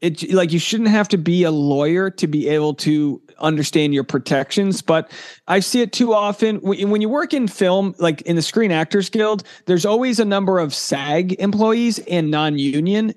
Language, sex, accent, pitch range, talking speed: English, male, American, 160-215 Hz, 195 wpm